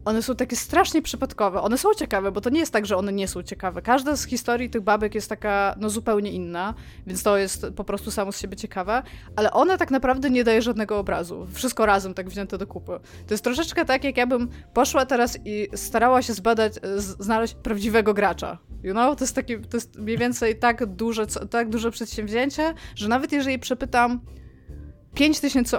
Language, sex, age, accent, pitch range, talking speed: Polish, female, 20-39, native, 205-250 Hz, 205 wpm